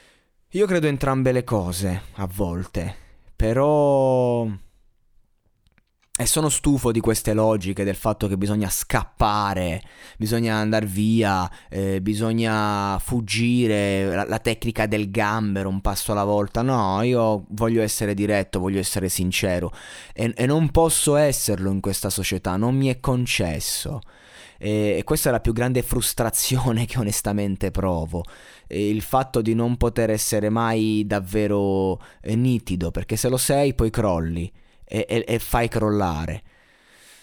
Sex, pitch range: male, 100-125 Hz